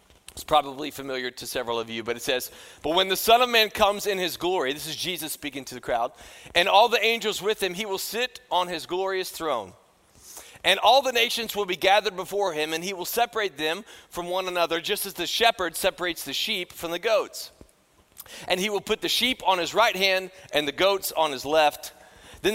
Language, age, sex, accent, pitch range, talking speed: English, 30-49, male, American, 160-215 Hz, 225 wpm